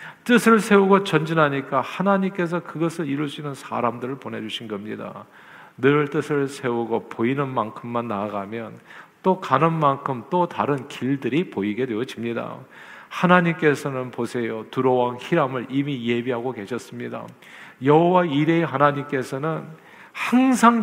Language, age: Korean, 40-59